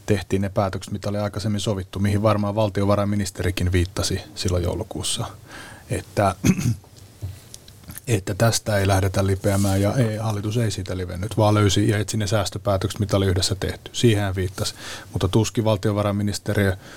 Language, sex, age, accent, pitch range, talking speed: Finnish, male, 30-49, native, 100-110 Hz, 140 wpm